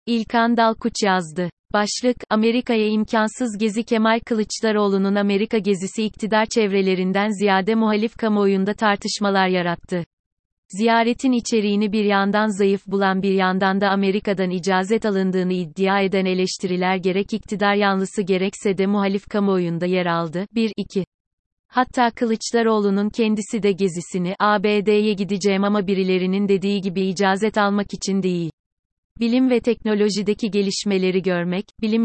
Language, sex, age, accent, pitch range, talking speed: Turkish, female, 30-49, native, 190-220 Hz, 120 wpm